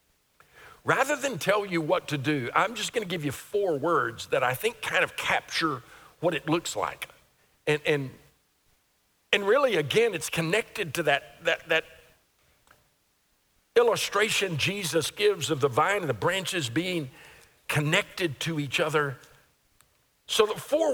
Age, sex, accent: 50-69, male, American